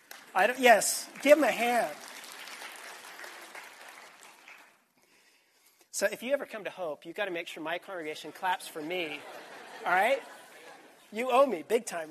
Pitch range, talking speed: 155-225 Hz, 155 wpm